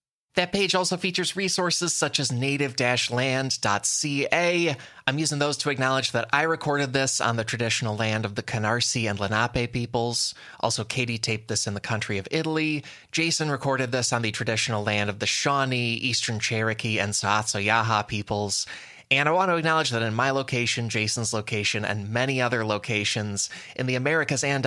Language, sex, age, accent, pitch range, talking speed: English, male, 20-39, American, 110-165 Hz, 170 wpm